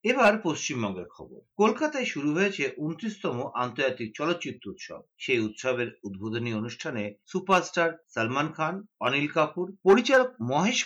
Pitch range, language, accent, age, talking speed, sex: 125-185 Hz, Bengali, native, 50-69, 115 wpm, male